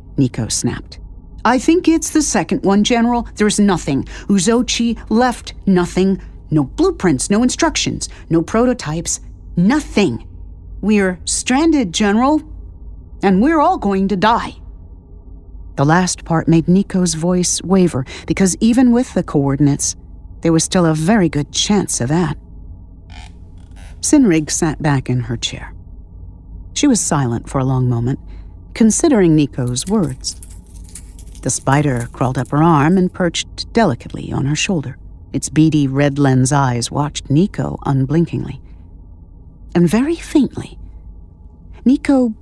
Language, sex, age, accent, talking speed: English, female, 50-69, American, 130 wpm